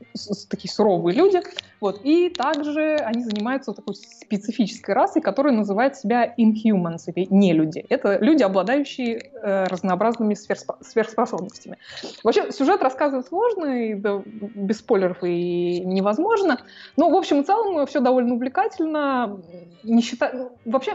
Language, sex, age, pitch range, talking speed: Russian, female, 20-39, 195-275 Hz, 140 wpm